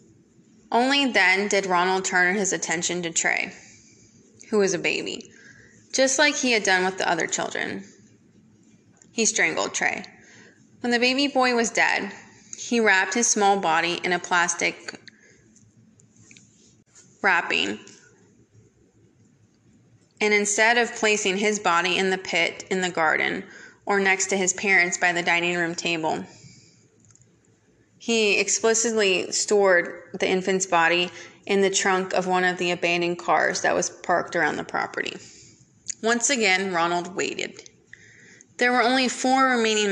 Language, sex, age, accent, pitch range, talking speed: English, female, 20-39, American, 175-210 Hz, 140 wpm